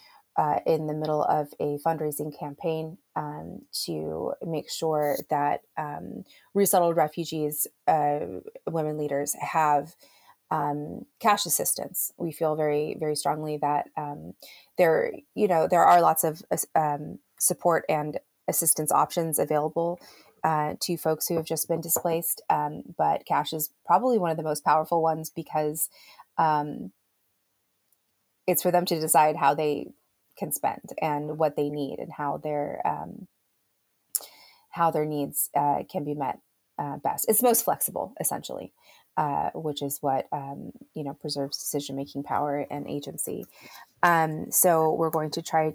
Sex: female